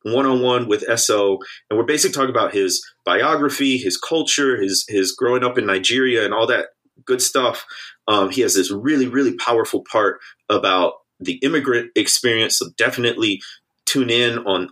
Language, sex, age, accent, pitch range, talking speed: English, male, 30-49, American, 115-170 Hz, 165 wpm